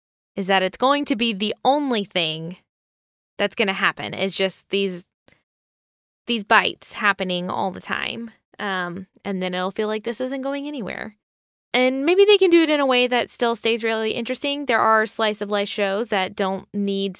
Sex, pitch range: female, 190-240 Hz